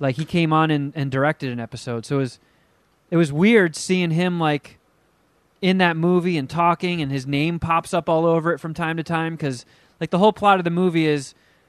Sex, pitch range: male, 150-180 Hz